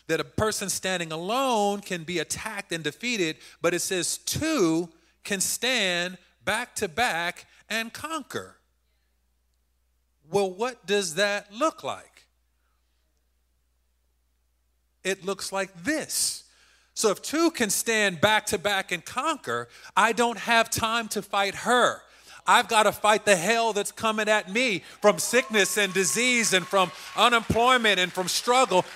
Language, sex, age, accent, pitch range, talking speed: English, male, 40-59, American, 160-230 Hz, 140 wpm